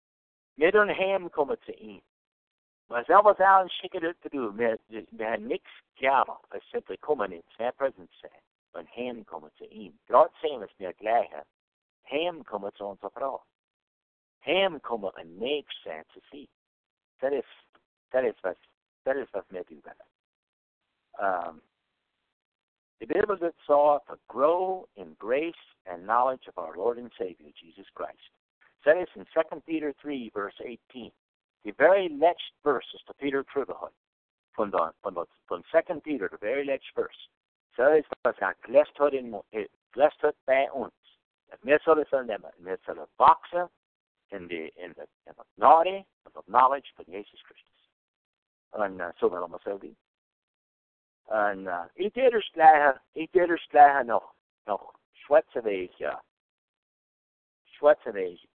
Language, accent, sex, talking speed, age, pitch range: English, American, male, 100 wpm, 60-79, 120-195 Hz